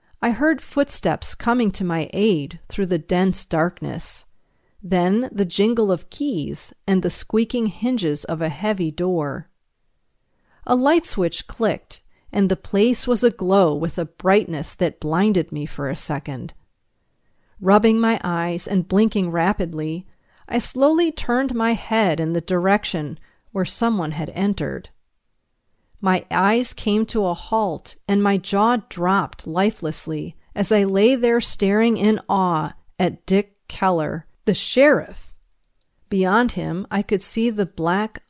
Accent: American